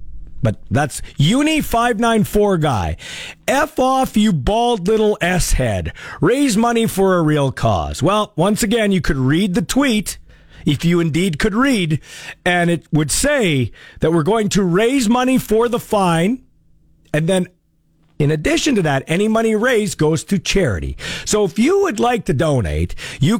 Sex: male